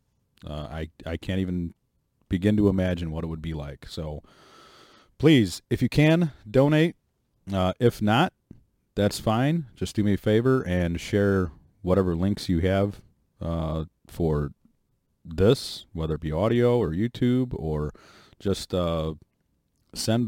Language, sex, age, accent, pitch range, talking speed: English, male, 30-49, American, 80-105 Hz, 140 wpm